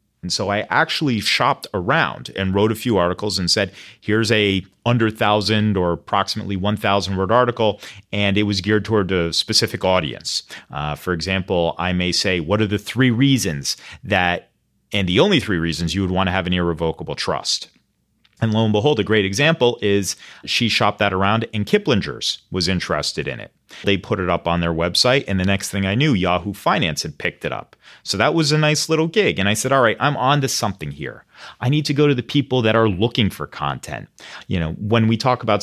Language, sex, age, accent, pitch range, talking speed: English, male, 30-49, American, 95-125 Hz, 210 wpm